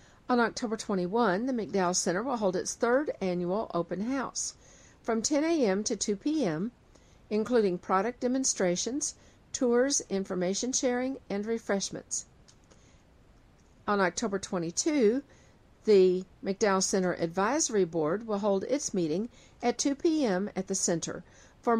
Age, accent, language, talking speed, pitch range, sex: 50-69, American, English, 125 wpm, 185-235 Hz, female